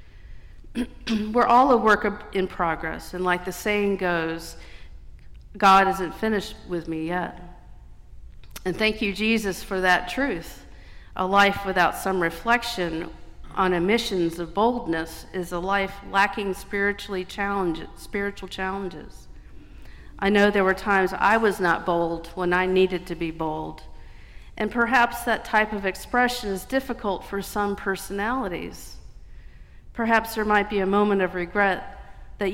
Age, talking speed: 50-69, 140 wpm